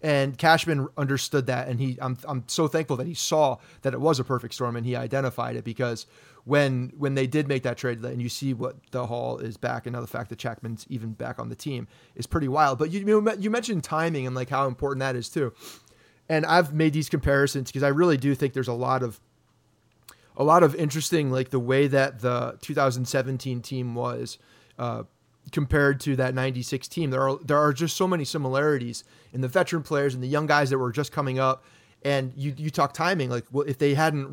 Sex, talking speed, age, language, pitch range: male, 220 wpm, 30-49, English, 125-150 Hz